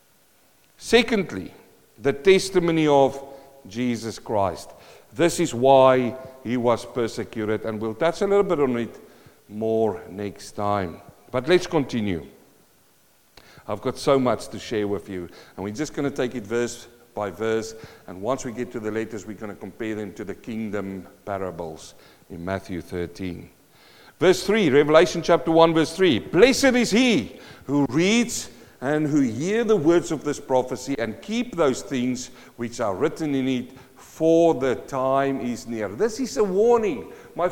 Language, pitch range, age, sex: English, 115-195 Hz, 50-69, male